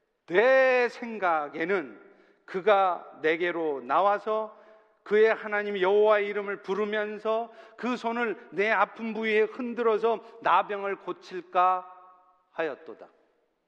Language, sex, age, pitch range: Korean, male, 40-59, 200-255 Hz